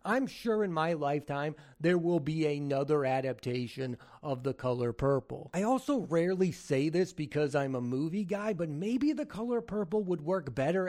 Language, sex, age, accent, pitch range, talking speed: English, male, 30-49, American, 145-200 Hz, 175 wpm